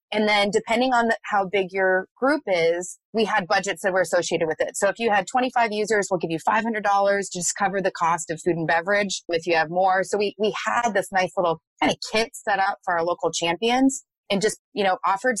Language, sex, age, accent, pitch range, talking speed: English, female, 30-49, American, 175-210 Hz, 240 wpm